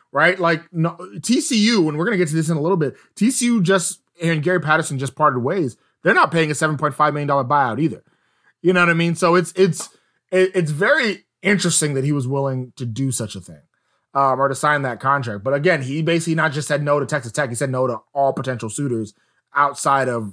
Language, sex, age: English, male, 20-39